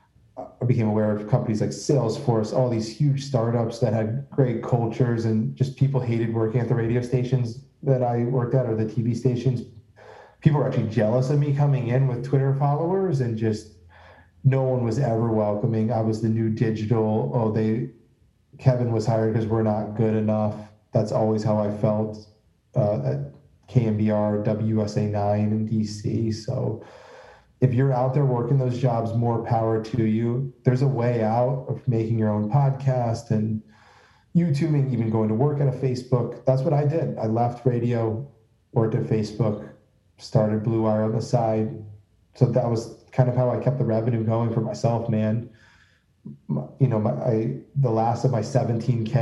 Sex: male